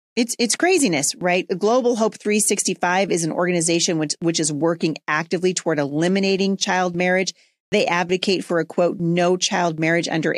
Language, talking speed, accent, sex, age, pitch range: English, 160 wpm, American, female, 30-49, 160-200 Hz